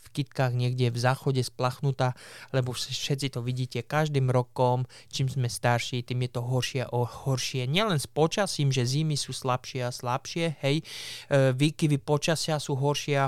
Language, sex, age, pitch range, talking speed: Slovak, male, 20-39, 125-150 Hz, 160 wpm